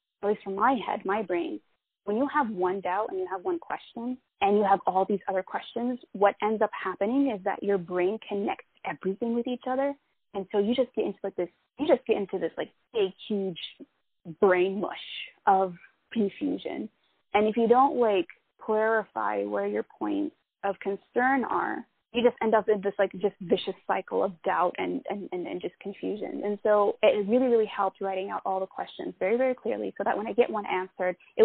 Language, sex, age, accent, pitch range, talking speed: English, female, 20-39, American, 195-240 Hz, 210 wpm